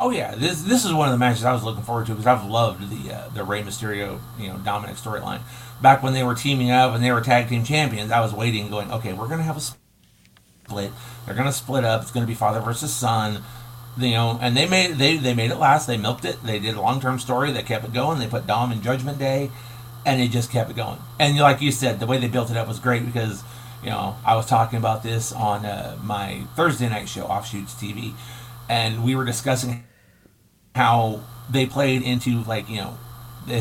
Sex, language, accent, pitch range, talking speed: male, English, American, 115-130 Hz, 240 wpm